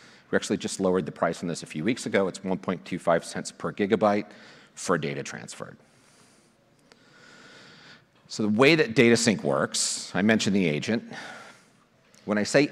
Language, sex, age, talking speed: English, male, 40-59, 160 wpm